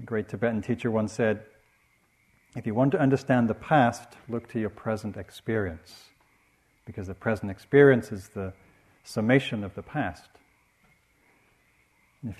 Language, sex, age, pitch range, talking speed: English, male, 50-69, 95-120 Hz, 140 wpm